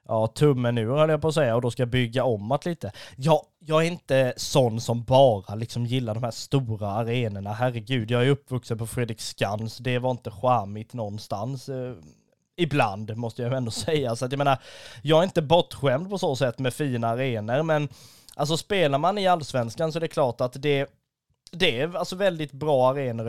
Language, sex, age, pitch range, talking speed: Swedish, male, 20-39, 120-150 Hz, 200 wpm